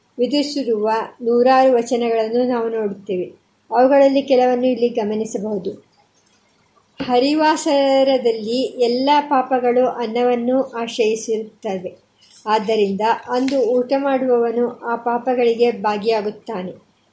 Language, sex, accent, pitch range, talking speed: Kannada, male, native, 225-265 Hz, 75 wpm